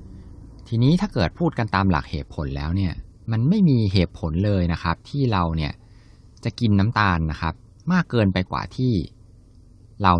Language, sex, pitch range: Thai, male, 85-105 Hz